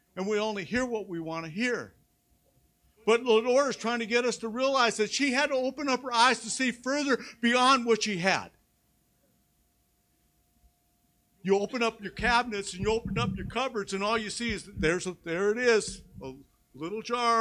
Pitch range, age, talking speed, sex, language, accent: 215-255 Hz, 50-69, 200 wpm, male, English, American